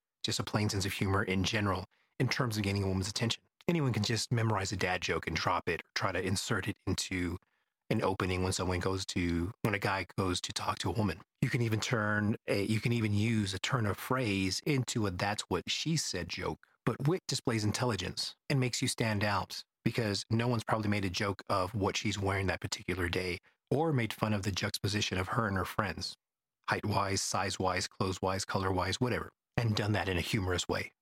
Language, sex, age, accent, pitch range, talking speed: English, male, 30-49, American, 95-115 Hz, 225 wpm